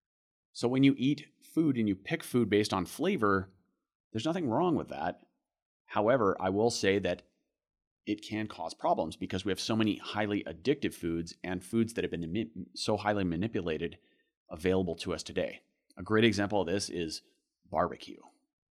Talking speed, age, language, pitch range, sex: 170 wpm, 30-49, English, 90-115 Hz, male